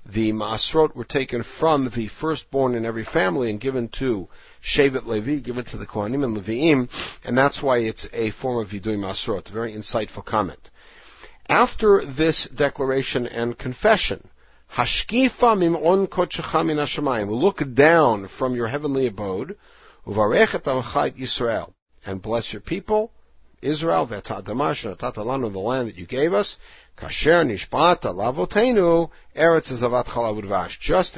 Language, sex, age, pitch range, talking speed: English, male, 60-79, 110-150 Hz, 120 wpm